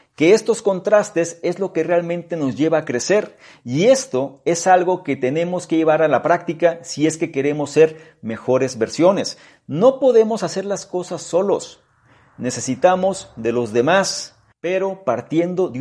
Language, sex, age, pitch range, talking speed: Spanish, male, 40-59, 125-170 Hz, 160 wpm